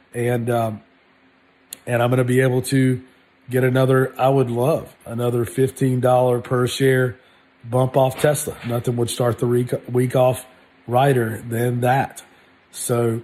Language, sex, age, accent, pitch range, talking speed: English, male, 40-59, American, 120-135 Hz, 140 wpm